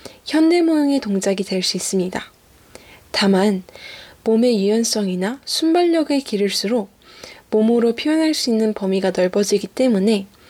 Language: Korean